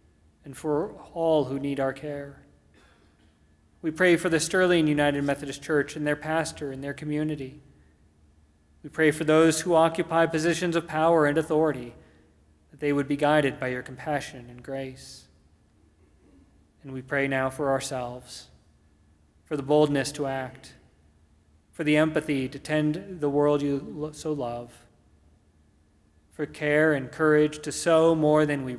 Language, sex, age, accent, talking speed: English, male, 30-49, American, 150 wpm